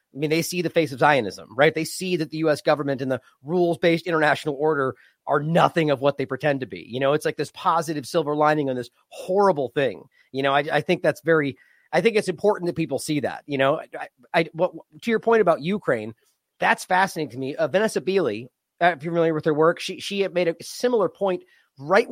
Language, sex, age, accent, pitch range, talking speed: English, male, 30-49, American, 135-175 Hz, 240 wpm